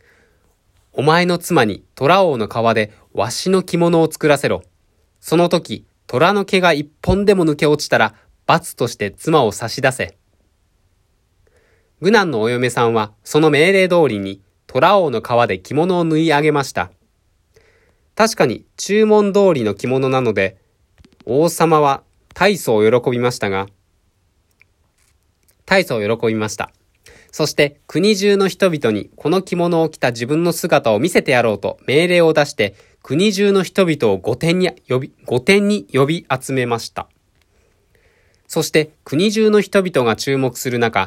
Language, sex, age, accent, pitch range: Japanese, male, 20-39, native, 110-170 Hz